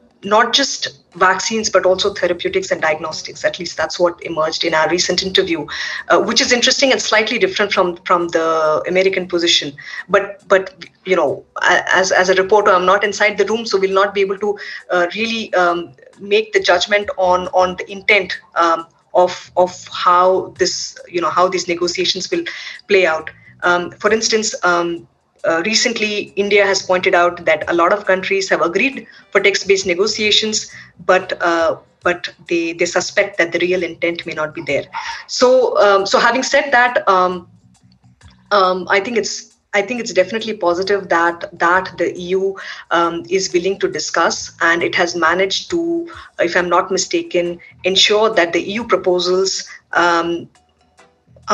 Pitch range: 175-210 Hz